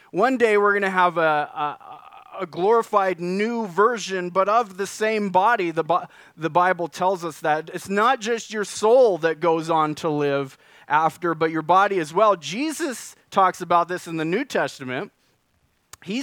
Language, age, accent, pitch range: English, 30-49, American, 165-215 Hz